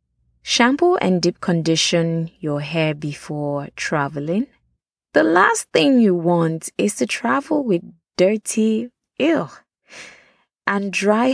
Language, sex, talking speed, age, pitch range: English, female, 110 wpm, 20-39, 165-220 Hz